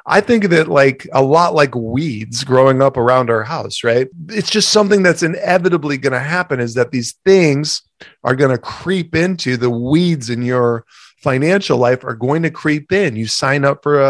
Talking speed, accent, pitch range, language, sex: 200 wpm, American, 120-150 Hz, English, male